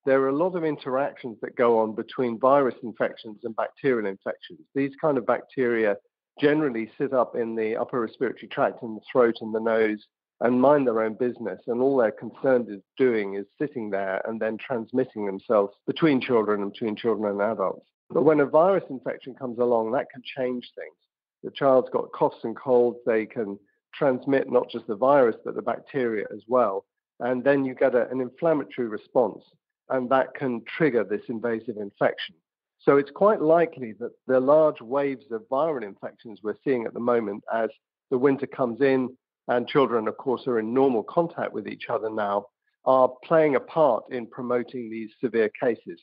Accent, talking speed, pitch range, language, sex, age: British, 190 wpm, 115-135 Hz, English, male, 50-69